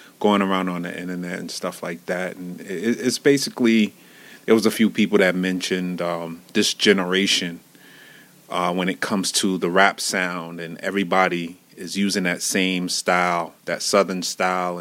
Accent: American